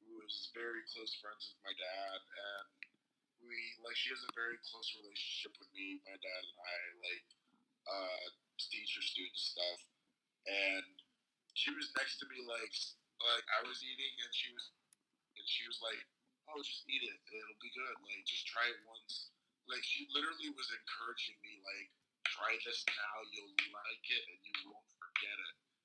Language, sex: English, male